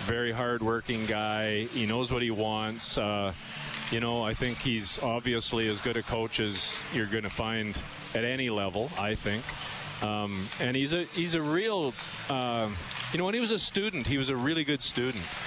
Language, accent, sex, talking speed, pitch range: English, American, male, 195 wpm, 110-135 Hz